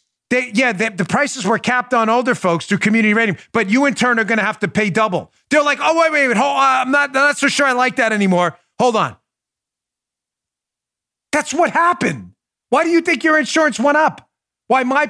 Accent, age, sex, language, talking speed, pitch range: American, 40-59, male, English, 220 wpm, 215-300 Hz